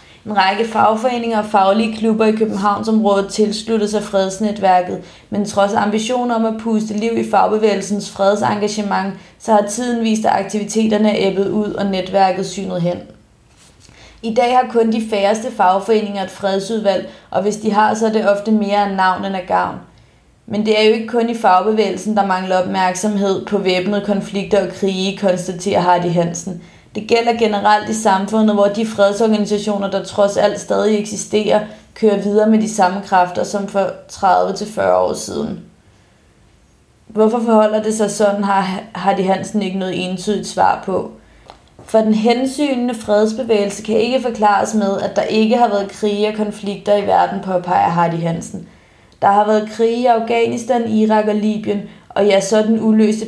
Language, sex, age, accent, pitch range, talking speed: Danish, female, 30-49, native, 195-220 Hz, 165 wpm